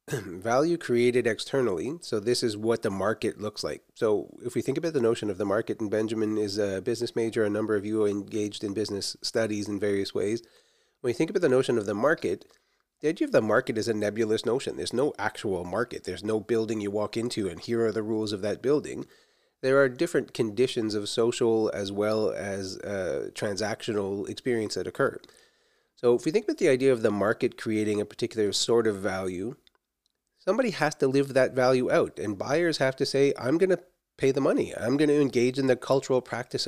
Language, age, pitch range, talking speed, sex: English, 30-49, 110-145 Hz, 215 wpm, male